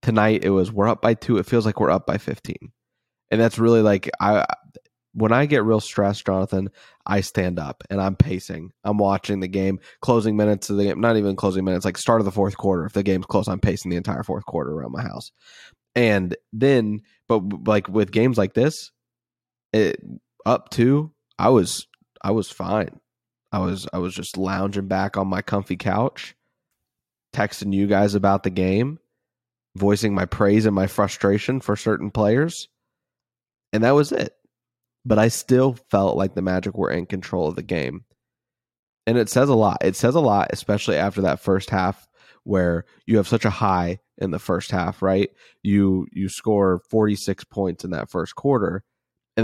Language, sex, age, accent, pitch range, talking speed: English, male, 20-39, American, 95-115 Hz, 190 wpm